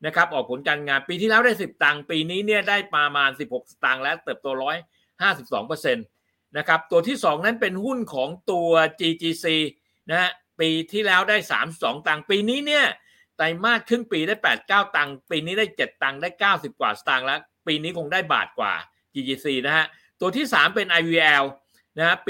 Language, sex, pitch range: Thai, male, 145-205 Hz